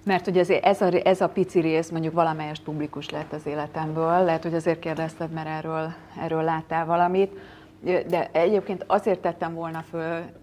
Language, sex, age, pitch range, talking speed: Hungarian, female, 30-49, 150-175 Hz, 165 wpm